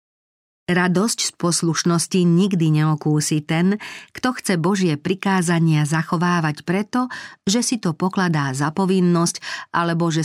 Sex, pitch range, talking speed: female, 150-190 Hz, 115 wpm